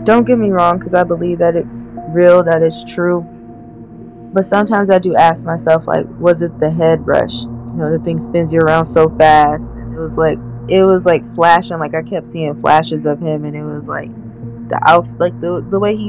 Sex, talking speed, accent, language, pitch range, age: female, 225 wpm, American, English, 115-175 Hz, 20-39